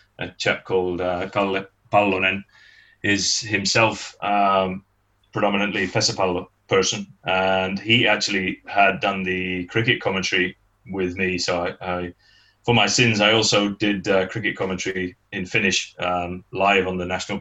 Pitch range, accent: 95-110 Hz, British